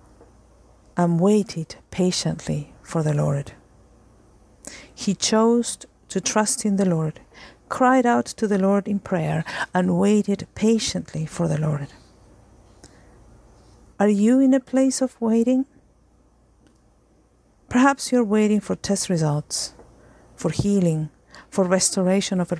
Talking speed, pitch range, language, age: 120 wpm, 160-205 Hz, English, 50-69